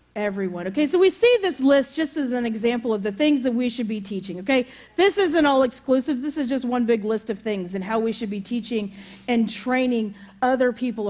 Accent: American